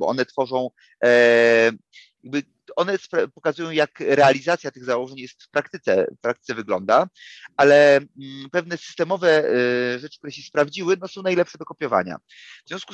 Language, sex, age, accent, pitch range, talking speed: Polish, male, 30-49, native, 125-165 Hz, 160 wpm